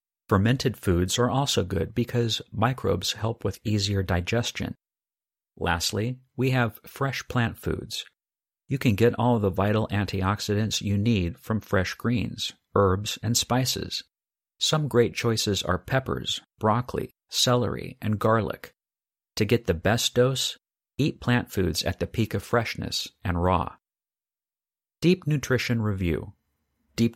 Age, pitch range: 50-69, 100-125 Hz